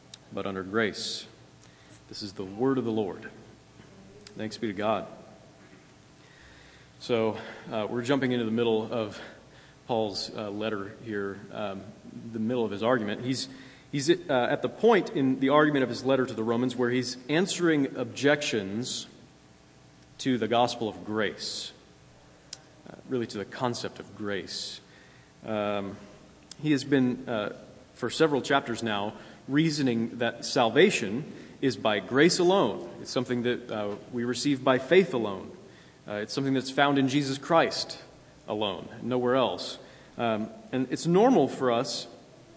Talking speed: 150 wpm